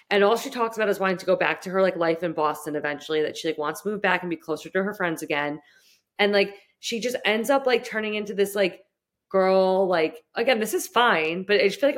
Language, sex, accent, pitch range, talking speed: English, female, American, 175-230 Hz, 270 wpm